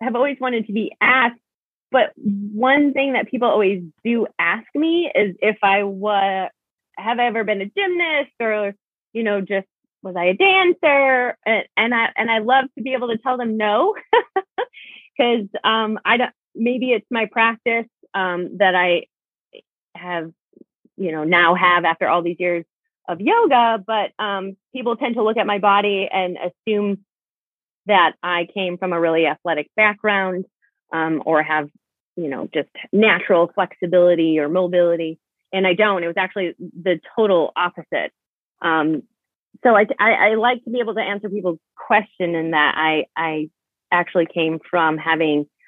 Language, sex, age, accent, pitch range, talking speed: English, female, 20-39, American, 175-230 Hz, 165 wpm